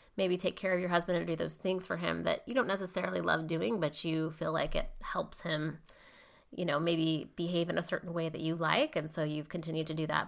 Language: English